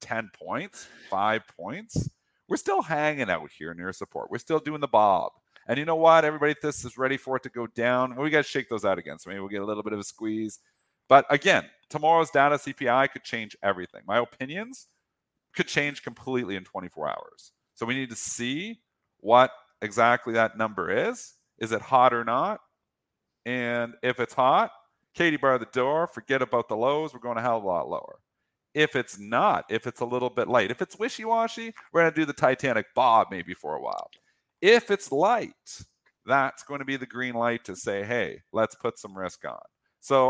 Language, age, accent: English, 40-59, American